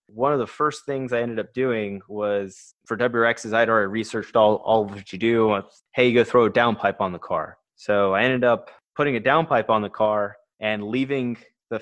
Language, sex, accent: English, male, American